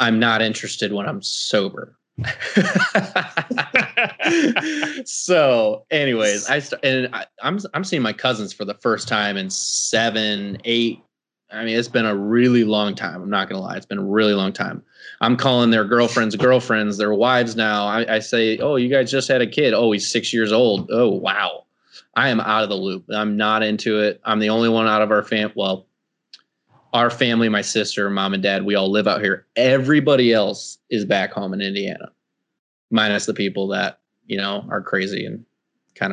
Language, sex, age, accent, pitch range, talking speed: English, male, 20-39, American, 105-130 Hz, 190 wpm